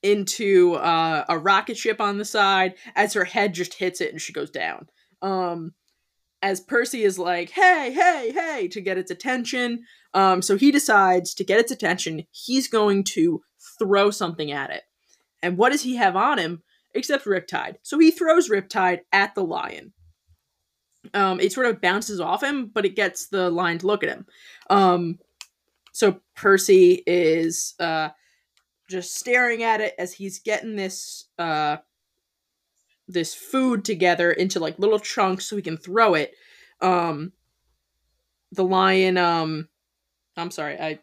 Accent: American